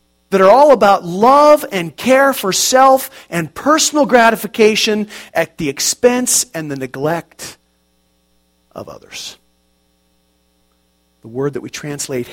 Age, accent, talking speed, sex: 40-59, American, 120 wpm, male